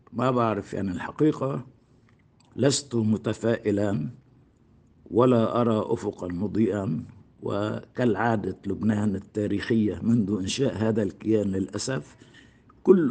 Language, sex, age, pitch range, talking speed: Arabic, male, 60-79, 95-120 Hz, 85 wpm